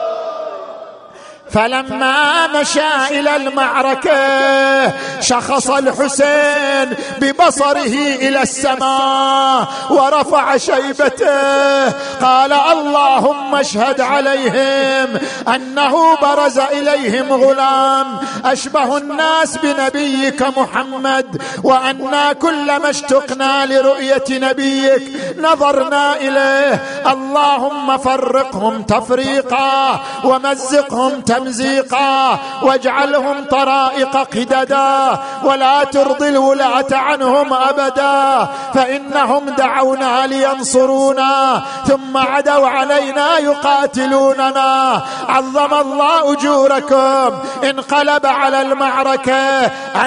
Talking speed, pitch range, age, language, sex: 65 wpm, 265-285 Hz, 50-69, Arabic, male